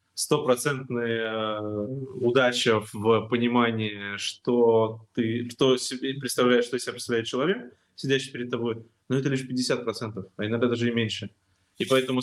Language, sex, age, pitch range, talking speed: Russian, male, 20-39, 105-130 Hz, 130 wpm